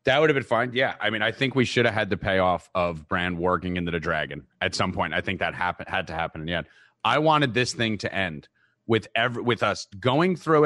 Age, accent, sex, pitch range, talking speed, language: 30-49, American, male, 120-195 Hz, 260 wpm, English